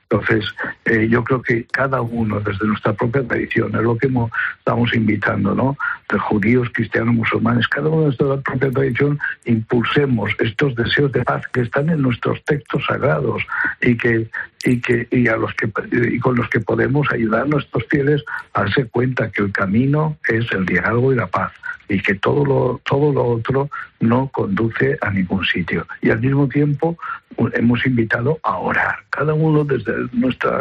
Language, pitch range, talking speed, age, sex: Spanish, 110-135 Hz, 180 wpm, 60-79, male